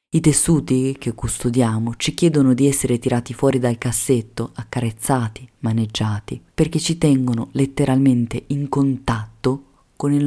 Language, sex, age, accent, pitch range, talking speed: Italian, female, 30-49, native, 120-150 Hz, 130 wpm